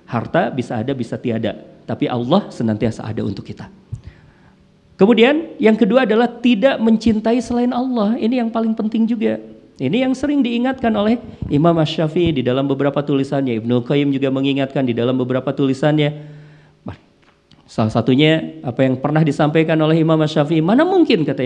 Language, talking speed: Indonesian, 155 wpm